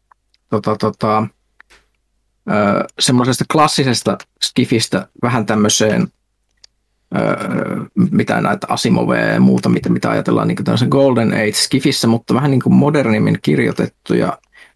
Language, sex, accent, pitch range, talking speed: Finnish, male, native, 110-140 Hz, 100 wpm